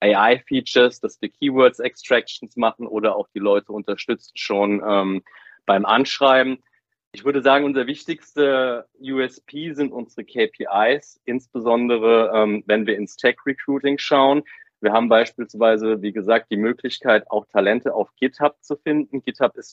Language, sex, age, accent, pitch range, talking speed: German, male, 30-49, German, 110-135 Hz, 135 wpm